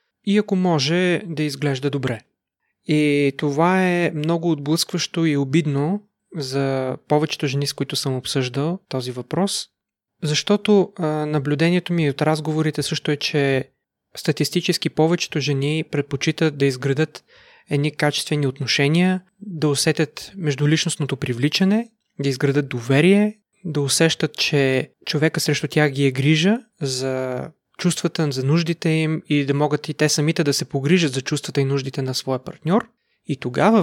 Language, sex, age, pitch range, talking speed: Bulgarian, male, 30-49, 140-170 Hz, 140 wpm